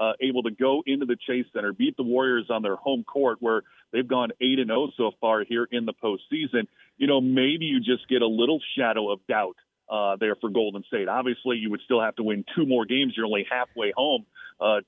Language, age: English, 40-59